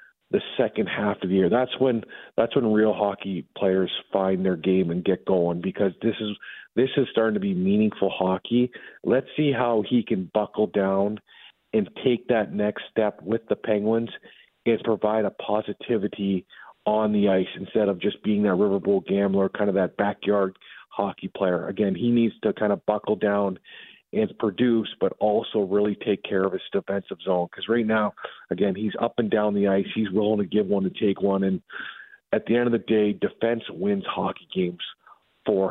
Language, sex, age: English, male, 40-59